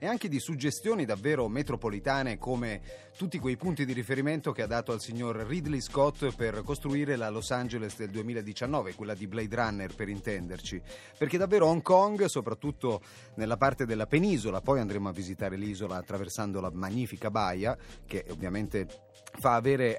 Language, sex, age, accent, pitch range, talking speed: Italian, male, 30-49, native, 105-145 Hz, 160 wpm